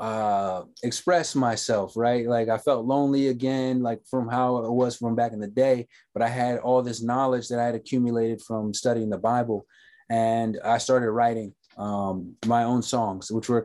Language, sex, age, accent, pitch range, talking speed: English, male, 20-39, American, 110-130 Hz, 190 wpm